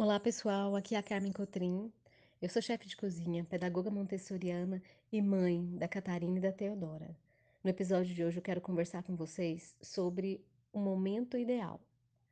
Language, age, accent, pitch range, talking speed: Portuguese, 20-39, Brazilian, 180-230 Hz, 170 wpm